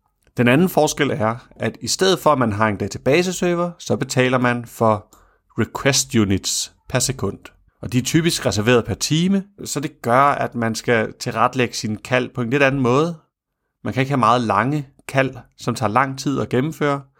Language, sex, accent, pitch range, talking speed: Danish, male, native, 110-145 Hz, 195 wpm